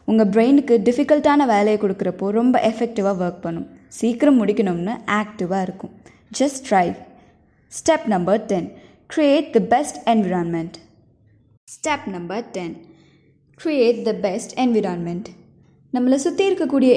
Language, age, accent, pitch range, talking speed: Tamil, 20-39, native, 185-250 Hz, 115 wpm